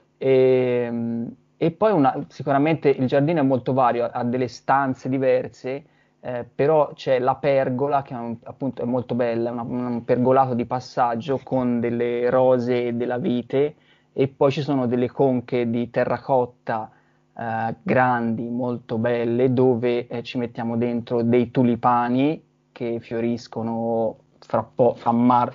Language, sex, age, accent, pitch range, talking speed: Italian, male, 20-39, native, 120-135 Hz, 145 wpm